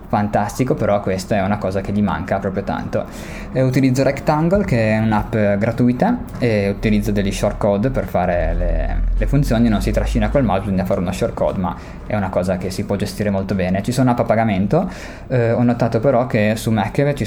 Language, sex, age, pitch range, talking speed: Italian, male, 20-39, 100-115 Hz, 200 wpm